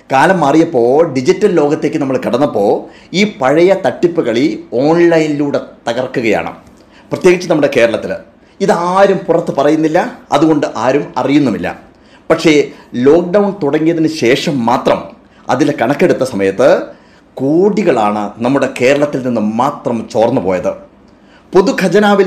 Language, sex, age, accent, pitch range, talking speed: Malayalam, male, 30-49, native, 130-175 Hz, 100 wpm